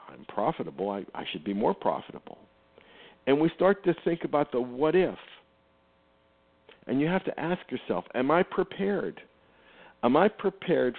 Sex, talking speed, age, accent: male, 160 wpm, 60-79, American